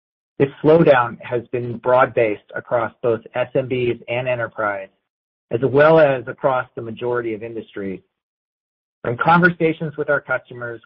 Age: 40-59